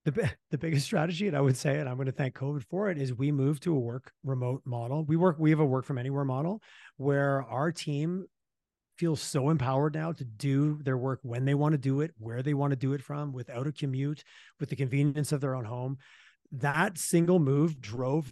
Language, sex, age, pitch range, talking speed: English, male, 30-49, 135-170 Hz, 235 wpm